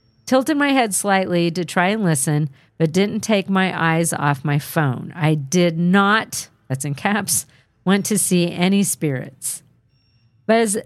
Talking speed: 155 wpm